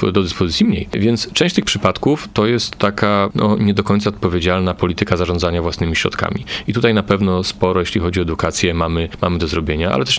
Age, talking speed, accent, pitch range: 30-49, 200 wpm, native, 90-105 Hz